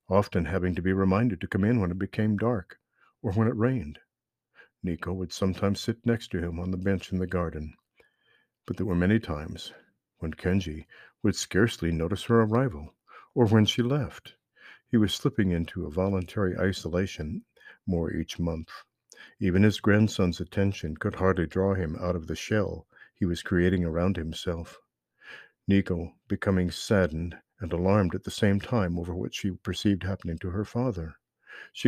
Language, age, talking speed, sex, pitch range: English, 60-79, 170 wpm, male, 85-105 Hz